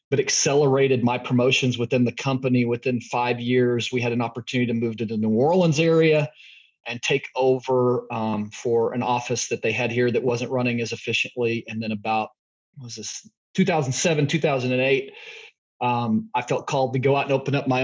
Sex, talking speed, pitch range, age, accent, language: male, 185 wpm, 125-155 Hz, 30-49, American, English